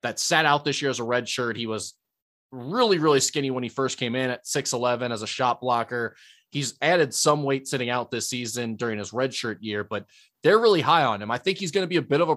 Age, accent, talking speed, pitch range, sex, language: 20-39, American, 265 wpm, 120-150 Hz, male, English